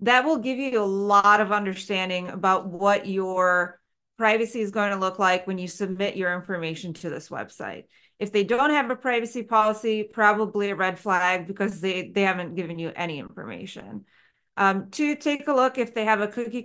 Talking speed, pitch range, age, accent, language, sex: 195 wpm, 185-225 Hz, 30-49, American, English, female